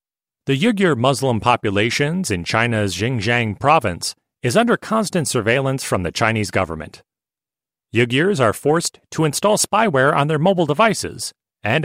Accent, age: American, 40-59